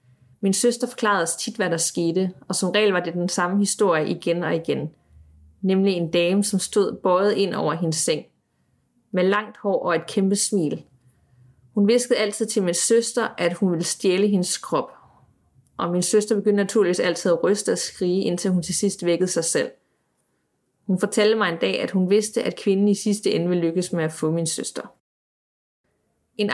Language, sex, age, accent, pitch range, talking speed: Danish, female, 30-49, native, 175-210 Hz, 190 wpm